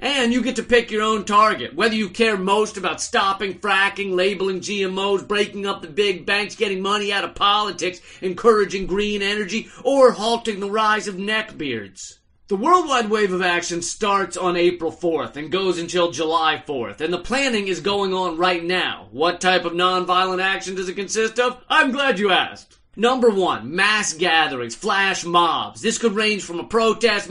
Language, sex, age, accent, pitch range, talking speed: English, male, 30-49, American, 185-235 Hz, 180 wpm